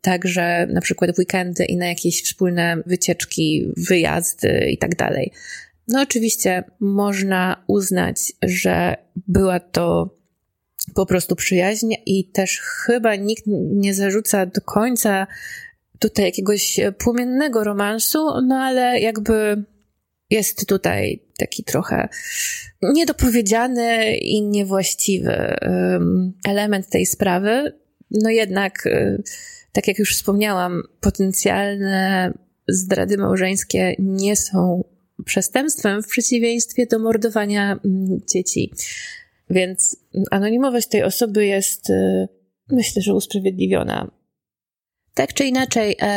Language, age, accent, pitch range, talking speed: Polish, 20-39, native, 190-230 Hz, 100 wpm